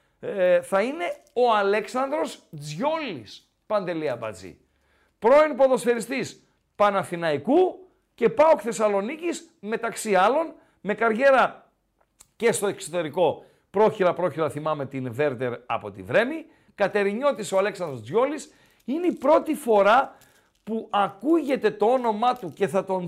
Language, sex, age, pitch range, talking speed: Greek, male, 50-69, 175-255 Hz, 110 wpm